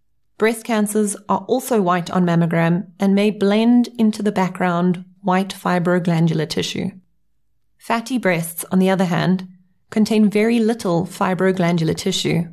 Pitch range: 180-215 Hz